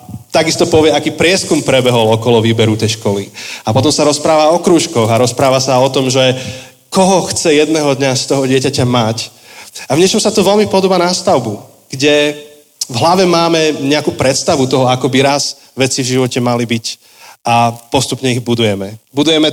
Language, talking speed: Slovak, 175 wpm